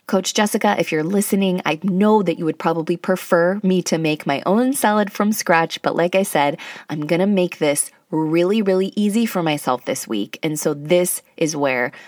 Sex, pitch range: female, 145-195 Hz